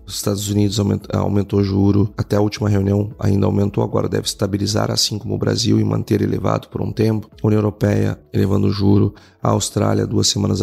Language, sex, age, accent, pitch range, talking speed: Portuguese, male, 30-49, Brazilian, 100-115 Hz, 200 wpm